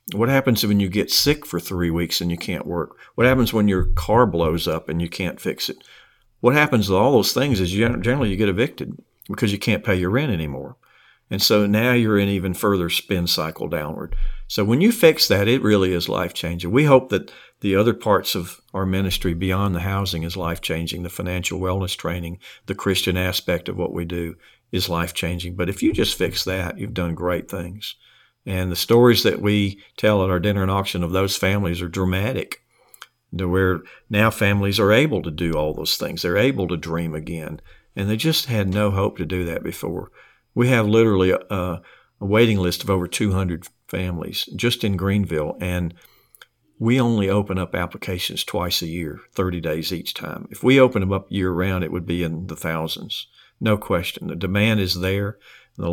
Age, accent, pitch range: 50-69, American, 90-105 Hz